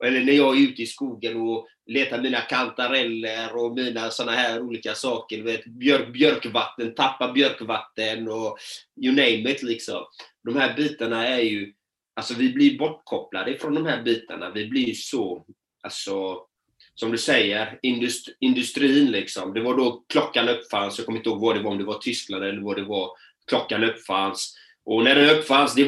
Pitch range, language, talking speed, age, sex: 115-140 Hz, Swedish, 180 wpm, 30-49, male